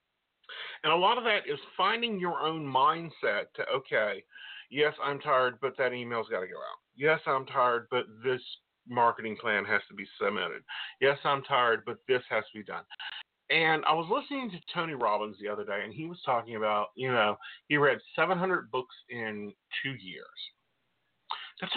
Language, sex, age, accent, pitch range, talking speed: English, male, 40-59, American, 125-200 Hz, 185 wpm